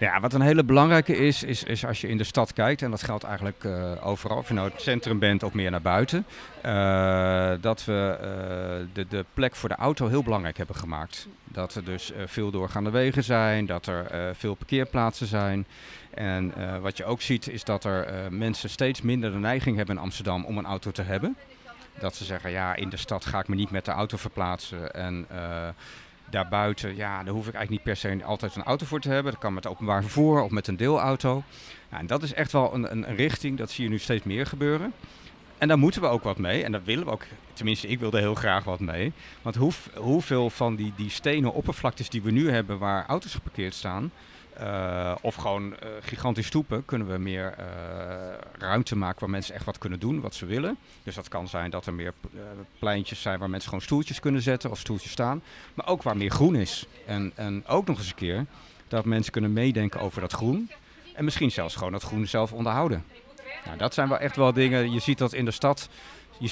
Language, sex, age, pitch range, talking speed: Dutch, male, 50-69, 95-130 Hz, 230 wpm